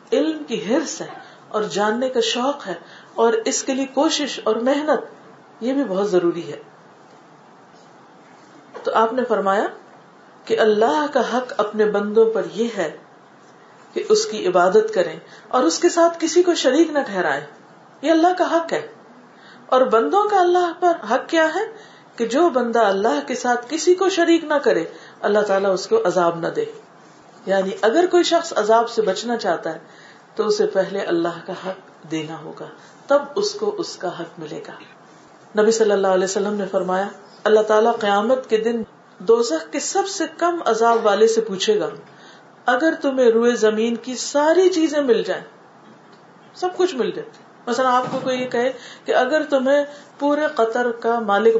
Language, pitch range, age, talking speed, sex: Urdu, 215-300 Hz, 50-69, 175 wpm, female